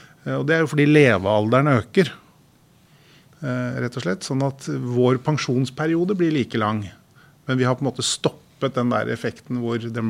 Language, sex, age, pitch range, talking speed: English, male, 30-49, 115-145 Hz, 165 wpm